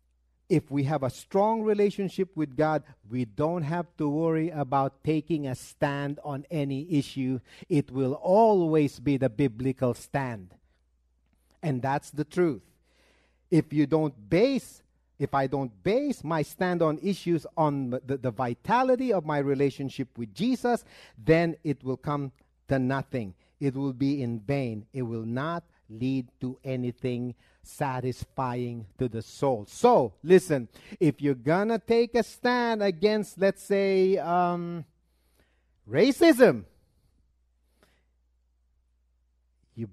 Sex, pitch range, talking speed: male, 110-165 Hz, 130 wpm